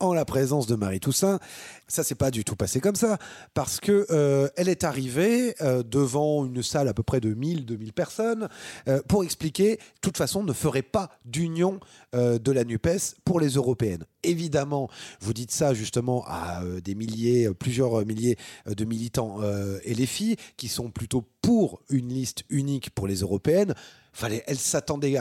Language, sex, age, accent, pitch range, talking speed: French, male, 30-49, French, 115-170 Hz, 185 wpm